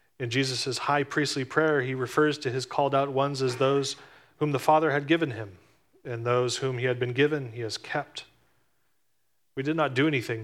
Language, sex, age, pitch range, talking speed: English, male, 30-49, 120-140 Hz, 195 wpm